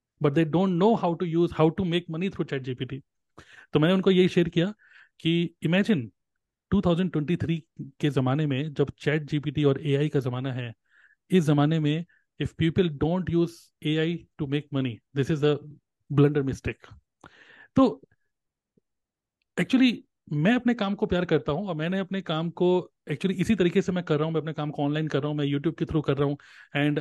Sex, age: male, 30-49